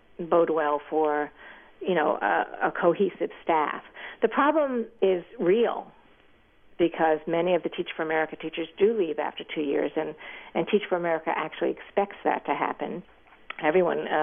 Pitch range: 150-180 Hz